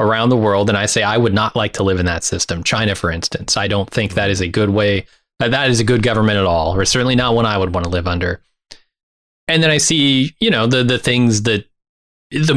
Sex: male